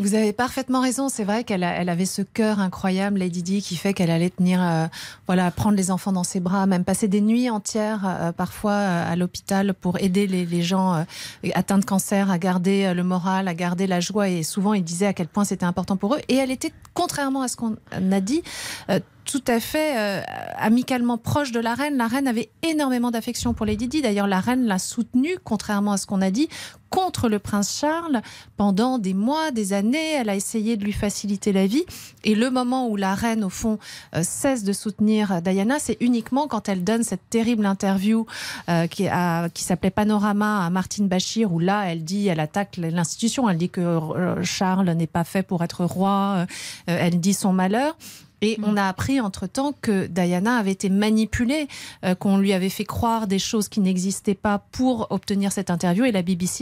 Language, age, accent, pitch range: French, 30-49, French, 185-230 Hz